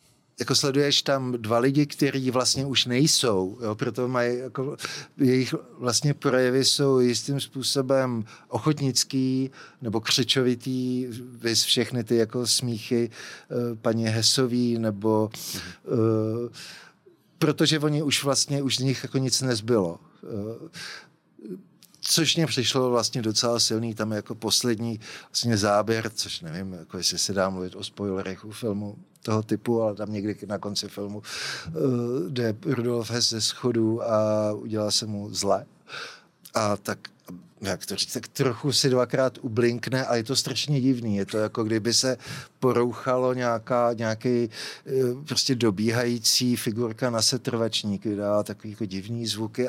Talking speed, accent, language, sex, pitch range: 135 wpm, native, Czech, male, 110-135 Hz